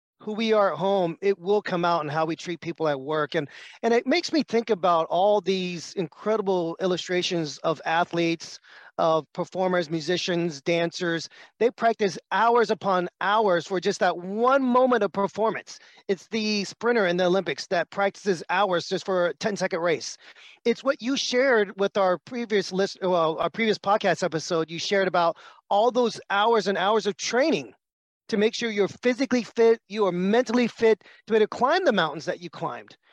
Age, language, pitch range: 30-49, English, 180-220 Hz